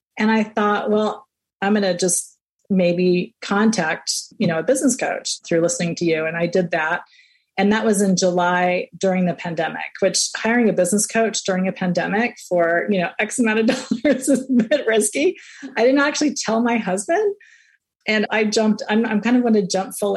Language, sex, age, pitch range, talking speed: English, female, 30-49, 180-240 Hz, 200 wpm